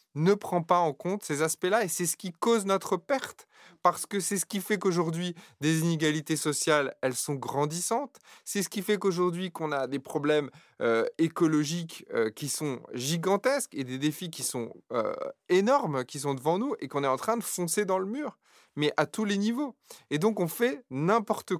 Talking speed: 205 wpm